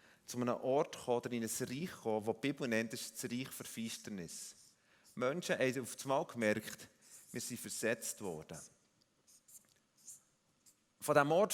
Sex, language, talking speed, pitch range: male, German, 150 wpm, 105-160 Hz